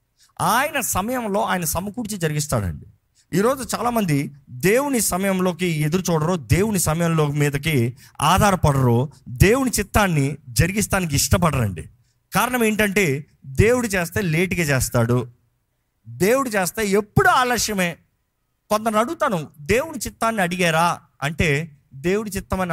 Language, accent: Telugu, native